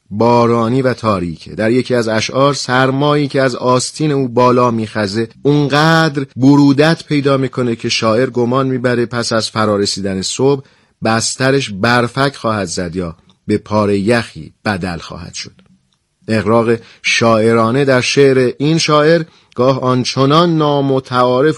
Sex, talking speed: male, 130 wpm